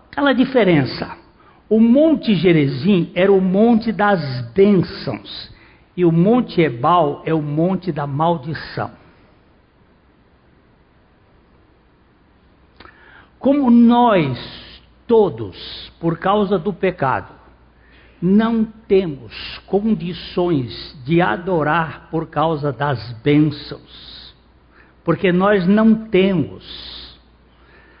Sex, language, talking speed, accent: male, Portuguese, 85 wpm, Brazilian